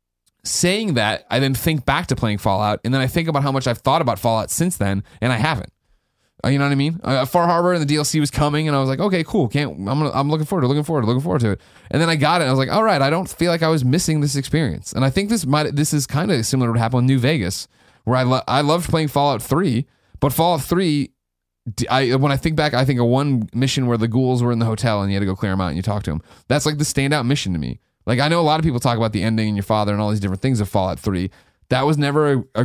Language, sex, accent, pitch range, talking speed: English, male, American, 110-150 Hz, 310 wpm